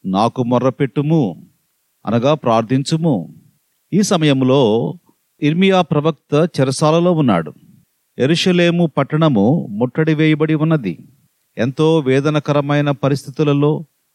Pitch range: 135-170 Hz